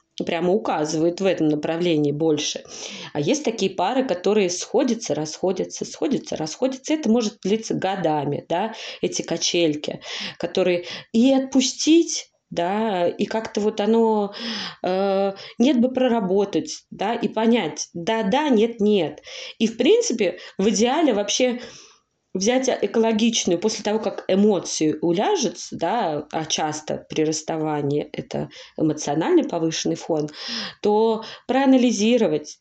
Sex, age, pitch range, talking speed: female, 20-39, 170-240 Hz, 115 wpm